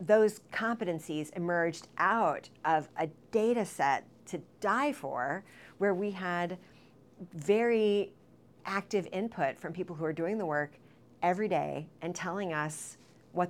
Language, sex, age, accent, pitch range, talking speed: English, female, 40-59, American, 160-215 Hz, 135 wpm